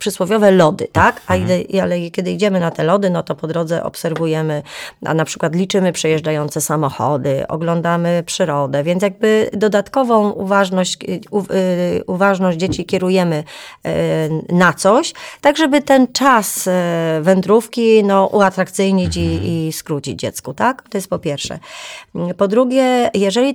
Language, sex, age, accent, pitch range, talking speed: Polish, female, 30-49, native, 165-205 Hz, 125 wpm